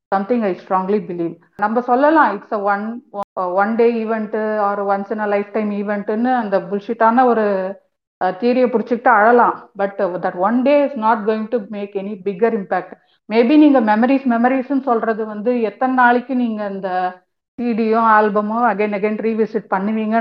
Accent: native